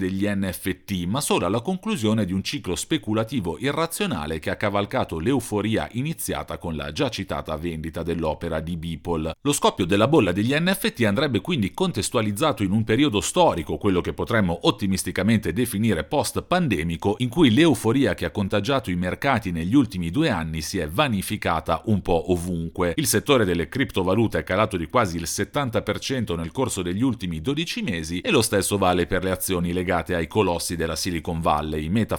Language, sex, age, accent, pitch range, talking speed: Italian, male, 40-59, native, 85-115 Hz, 170 wpm